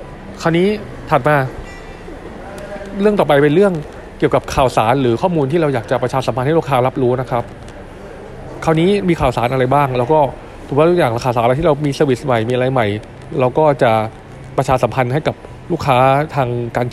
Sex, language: male, Thai